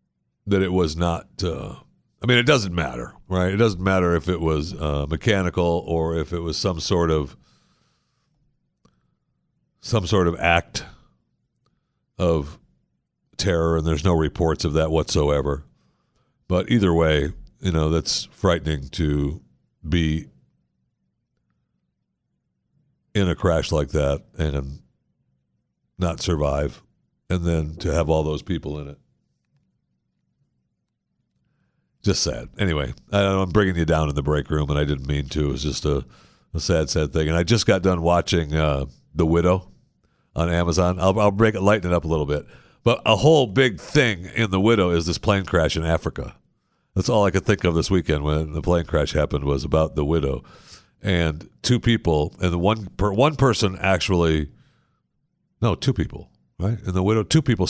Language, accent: English, American